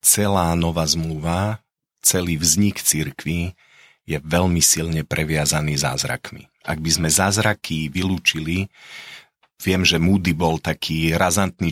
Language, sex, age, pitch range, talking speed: Slovak, male, 40-59, 80-95 Hz, 115 wpm